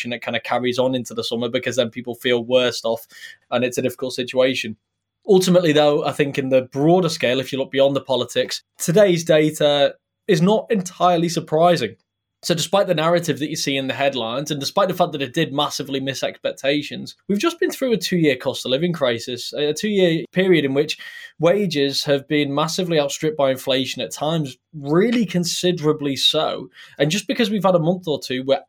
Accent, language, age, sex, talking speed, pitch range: British, English, 20-39, male, 195 wpm, 135-170 Hz